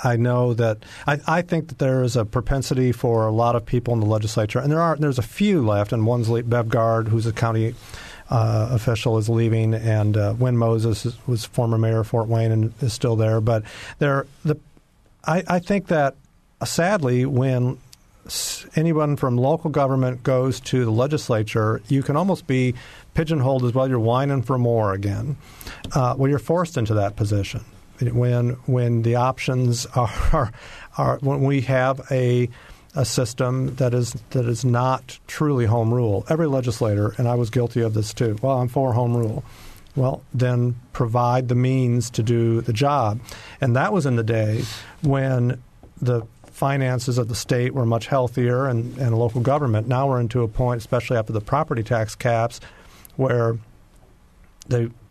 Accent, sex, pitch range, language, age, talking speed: American, male, 115-130 Hz, English, 50-69, 180 wpm